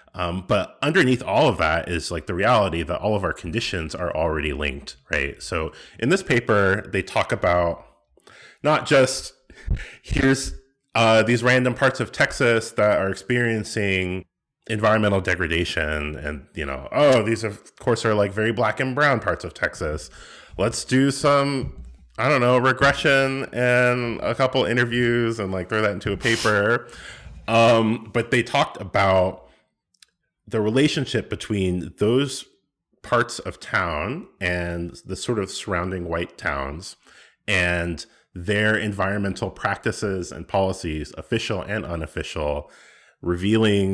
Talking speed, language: 140 wpm, English